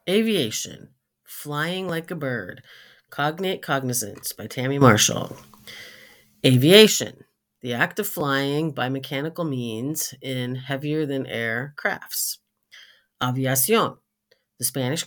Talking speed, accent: 105 wpm, American